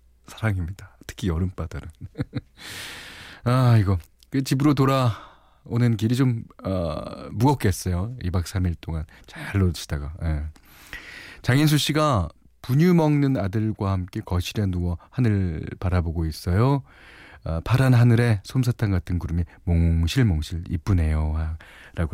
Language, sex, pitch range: Korean, male, 85-120 Hz